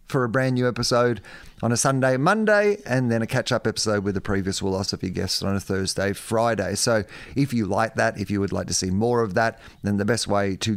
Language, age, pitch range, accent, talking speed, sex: English, 30-49, 100-125 Hz, Australian, 235 wpm, male